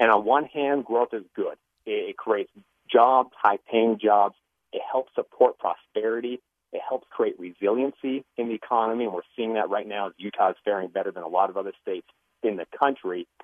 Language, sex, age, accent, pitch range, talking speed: English, male, 40-59, American, 115-140 Hz, 190 wpm